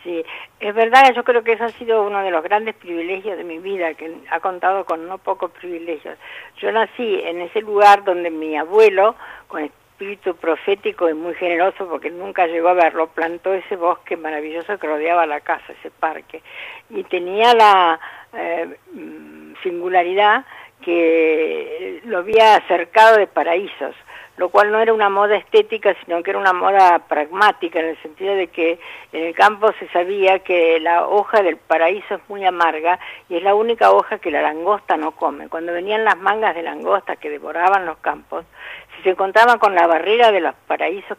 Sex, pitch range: female, 165-215 Hz